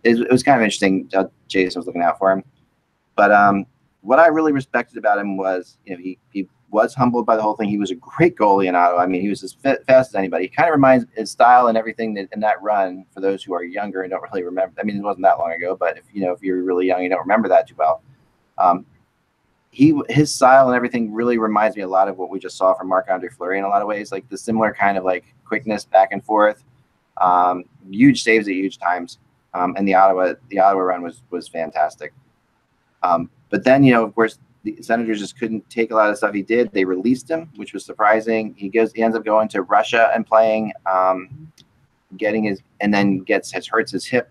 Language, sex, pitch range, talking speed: English, male, 95-125 Hz, 250 wpm